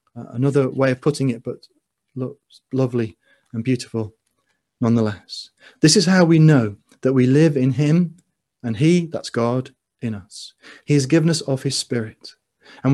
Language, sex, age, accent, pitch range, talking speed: English, male, 30-49, British, 125-155 Hz, 165 wpm